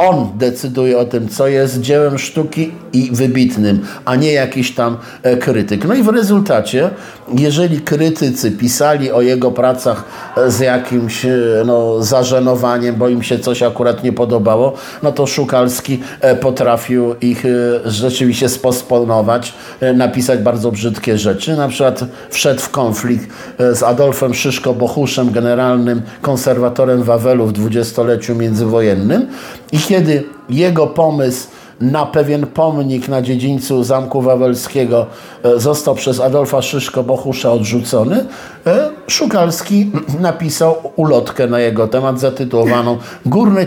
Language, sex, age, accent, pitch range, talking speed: Polish, male, 50-69, native, 120-150 Hz, 115 wpm